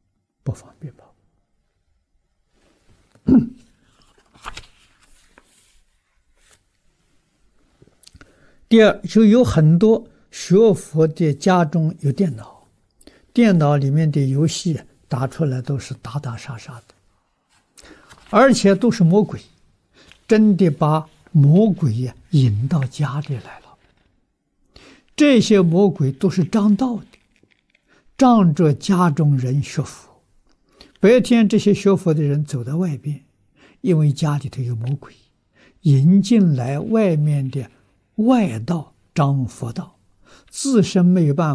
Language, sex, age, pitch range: Chinese, male, 60-79, 135-200 Hz